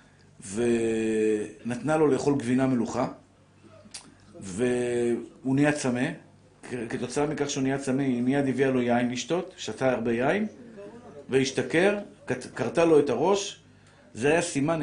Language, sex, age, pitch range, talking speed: Hebrew, male, 50-69, 120-160 Hz, 120 wpm